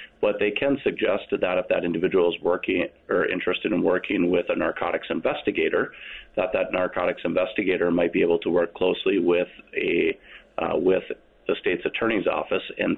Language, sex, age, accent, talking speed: English, male, 40-59, American, 165 wpm